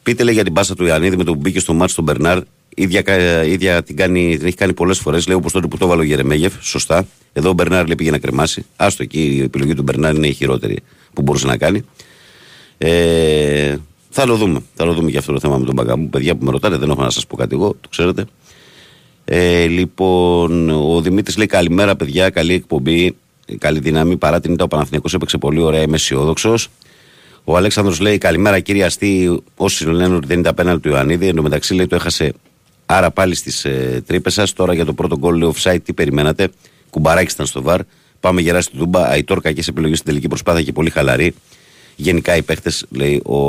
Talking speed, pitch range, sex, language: 210 wpm, 75-90 Hz, male, Greek